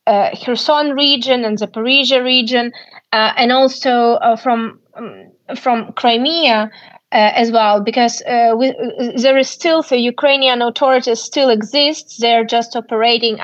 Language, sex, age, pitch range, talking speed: English, female, 20-39, 230-270 Hz, 140 wpm